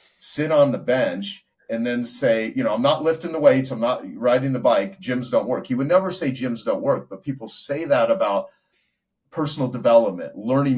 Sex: male